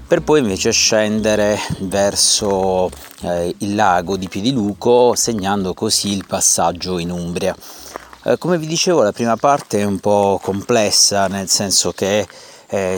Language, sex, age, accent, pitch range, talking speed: Italian, male, 30-49, native, 95-115 Hz, 145 wpm